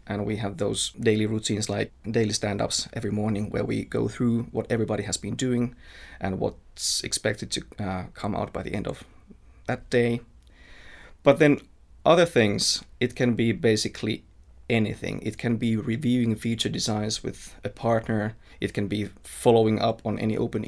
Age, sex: 20-39, male